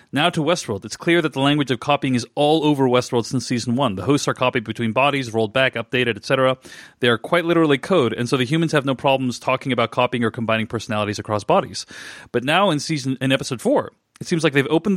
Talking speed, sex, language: 235 wpm, male, English